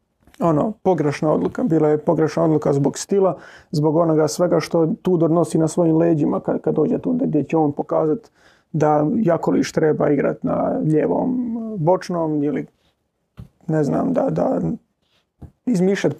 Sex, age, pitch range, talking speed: male, 30-49, 150-165 Hz, 150 wpm